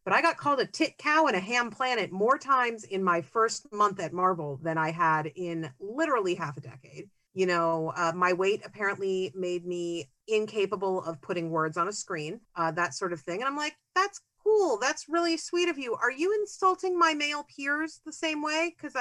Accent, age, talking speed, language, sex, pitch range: American, 50-69, 210 wpm, English, female, 175-275 Hz